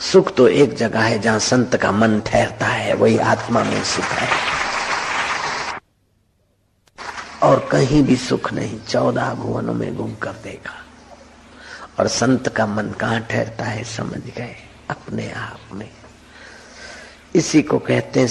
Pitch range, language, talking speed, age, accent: 105-130 Hz, Hindi, 140 wpm, 50-69, native